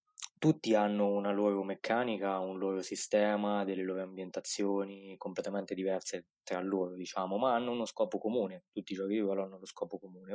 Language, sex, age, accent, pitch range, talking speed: Italian, male, 20-39, native, 90-100 Hz, 175 wpm